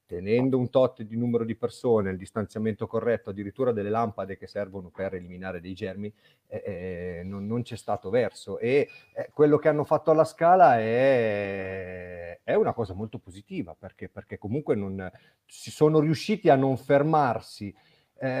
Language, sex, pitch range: Italian, male, 110-145 Hz